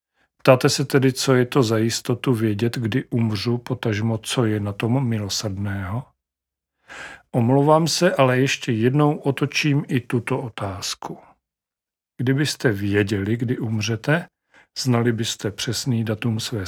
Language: Czech